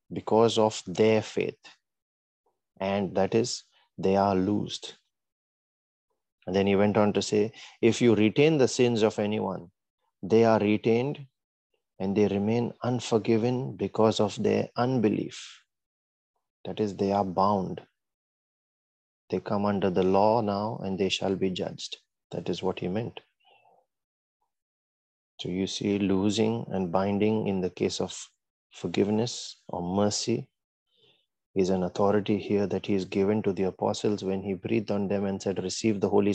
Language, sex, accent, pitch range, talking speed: English, male, Indian, 95-110 Hz, 150 wpm